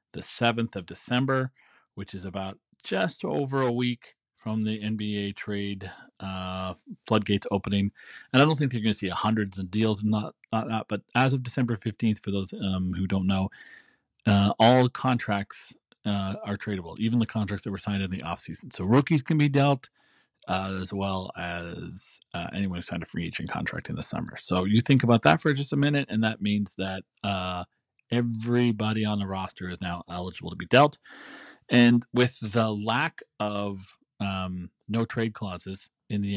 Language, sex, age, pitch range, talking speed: English, male, 40-59, 100-120 Hz, 185 wpm